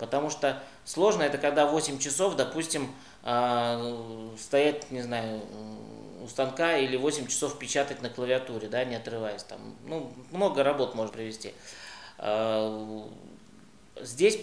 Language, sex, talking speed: Russian, male, 120 wpm